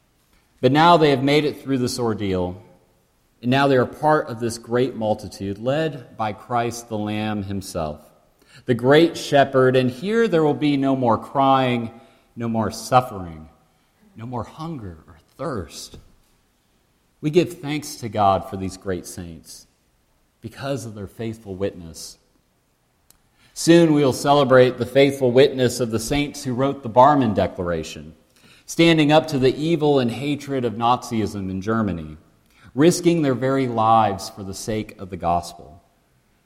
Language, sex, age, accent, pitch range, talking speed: English, male, 40-59, American, 100-140 Hz, 155 wpm